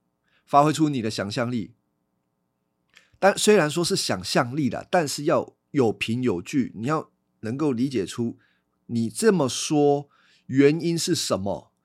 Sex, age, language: male, 50-69, Chinese